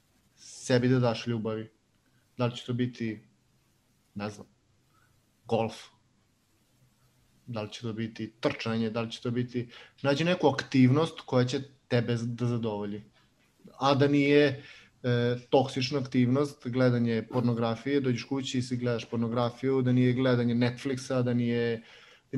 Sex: male